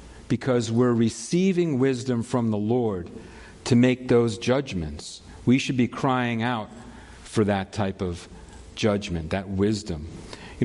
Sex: male